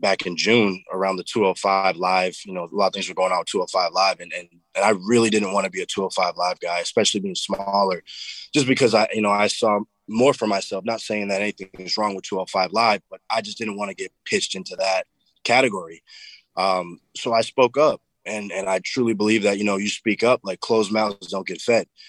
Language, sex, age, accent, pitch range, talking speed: English, male, 20-39, American, 90-110 Hz, 235 wpm